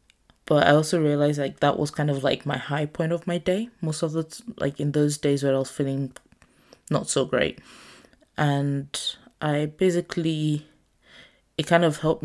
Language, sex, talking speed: English, female, 180 wpm